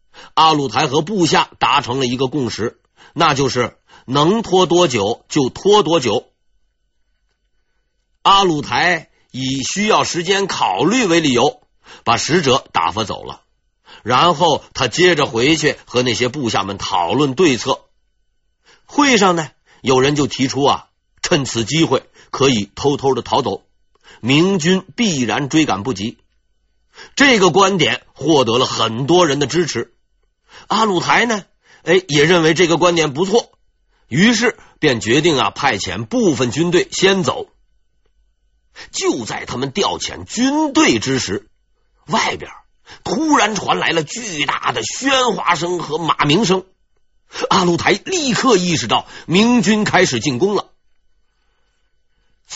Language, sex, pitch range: Chinese, male, 130-190 Hz